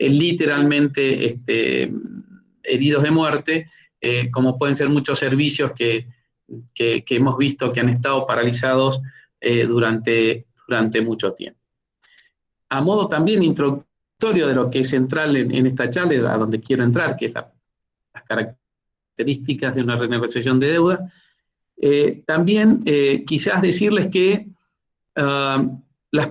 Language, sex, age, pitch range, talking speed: Spanish, male, 40-59, 135-175 Hz, 130 wpm